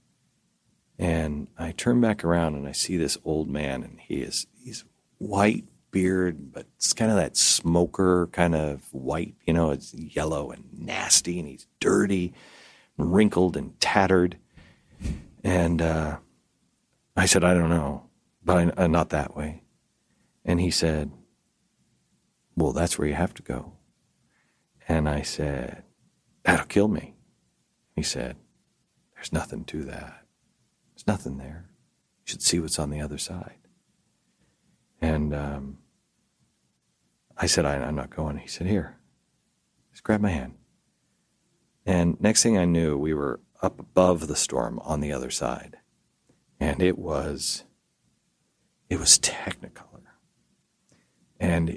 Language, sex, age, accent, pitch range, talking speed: English, male, 40-59, American, 75-90 Hz, 140 wpm